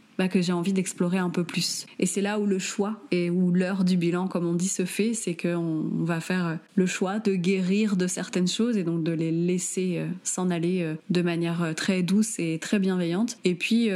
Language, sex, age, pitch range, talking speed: French, female, 20-39, 170-200 Hz, 220 wpm